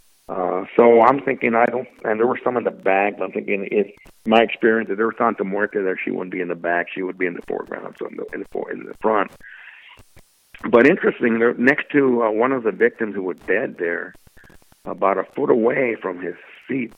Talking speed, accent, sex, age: 230 wpm, American, male, 60-79